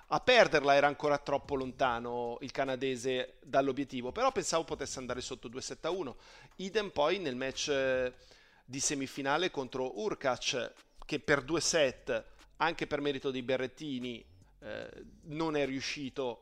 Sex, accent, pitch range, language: male, native, 130-170 Hz, Italian